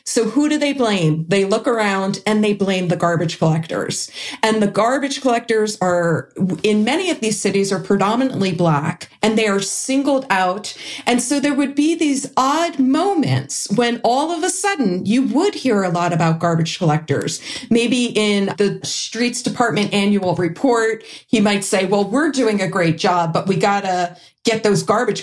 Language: English